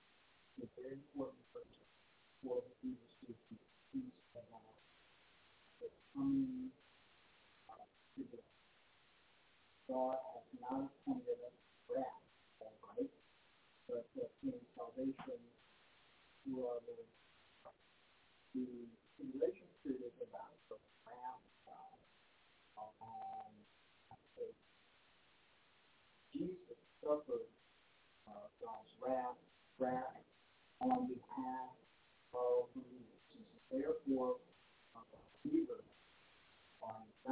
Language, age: English, 50-69